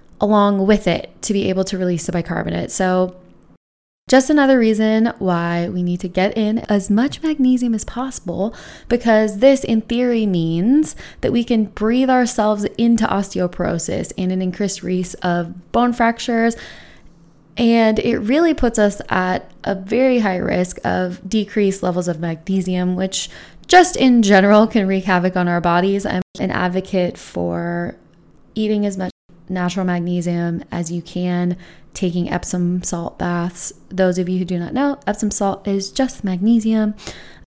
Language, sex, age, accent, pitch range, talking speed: English, female, 20-39, American, 180-230 Hz, 155 wpm